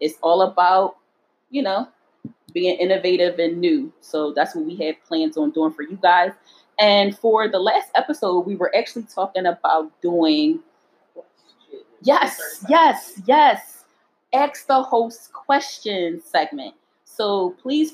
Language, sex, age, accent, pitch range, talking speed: English, female, 30-49, American, 175-255 Hz, 135 wpm